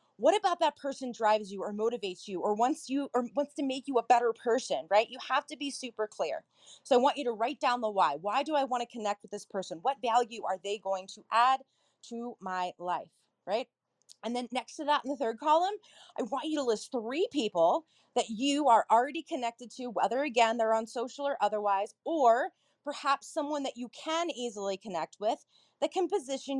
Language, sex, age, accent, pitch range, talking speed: English, female, 30-49, American, 215-295 Hz, 215 wpm